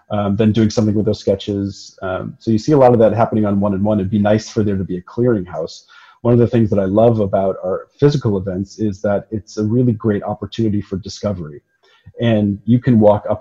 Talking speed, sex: 235 wpm, male